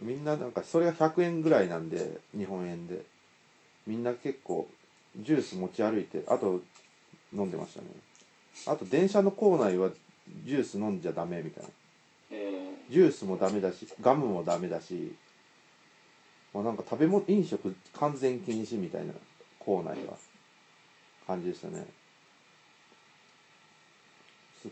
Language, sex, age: Japanese, male, 40-59